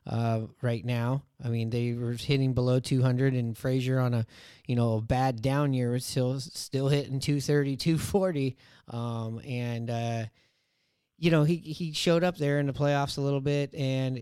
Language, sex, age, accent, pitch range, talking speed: English, male, 30-49, American, 125-145 Hz, 175 wpm